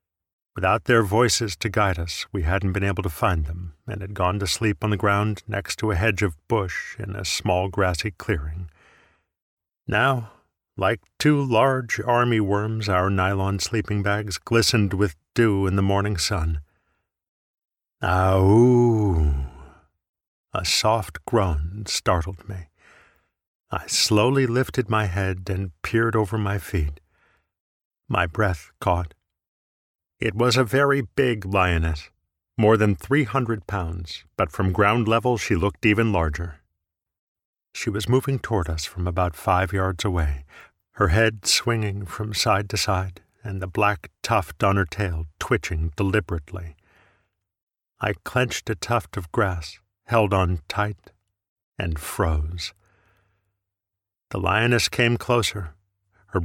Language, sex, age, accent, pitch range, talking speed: English, male, 50-69, American, 90-110 Hz, 135 wpm